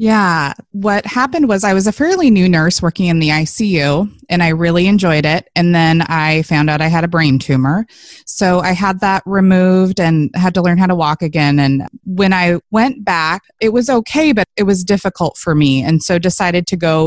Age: 20-39